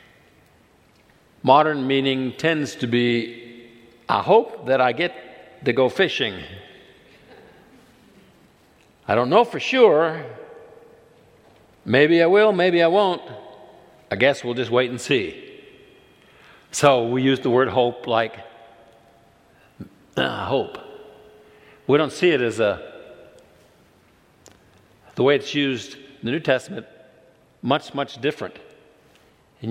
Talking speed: 115 wpm